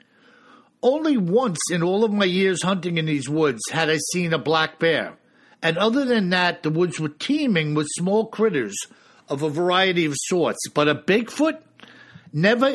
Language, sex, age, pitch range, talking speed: English, male, 60-79, 155-200 Hz, 175 wpm